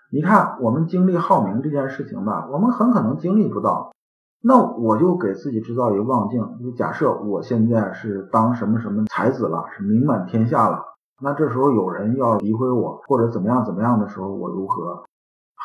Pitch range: 115-175 Hz